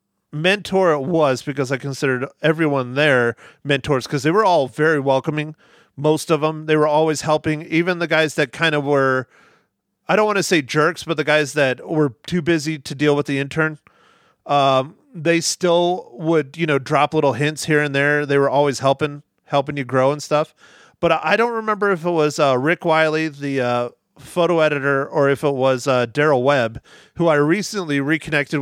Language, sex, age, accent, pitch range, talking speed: English, male, 30-49, American, 130-160 Hz, 195 wpm